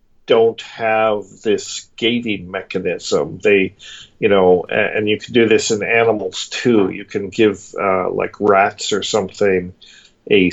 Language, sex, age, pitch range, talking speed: English, male, 50-69, 100-135 Hz, 140 wpm